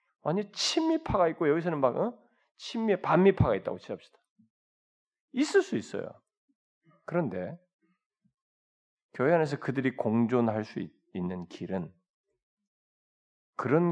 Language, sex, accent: Korean, male, native